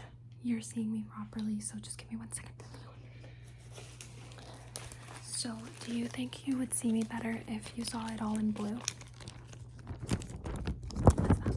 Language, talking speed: English, 145 wpm